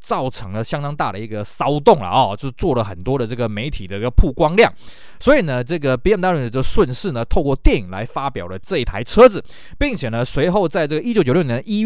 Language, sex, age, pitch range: Chinese, male, 20-39, 115-185 Hz